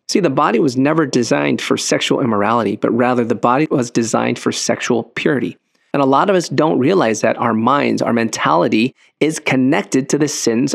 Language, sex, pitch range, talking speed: English, male, 115-145 Hz, 195 wpm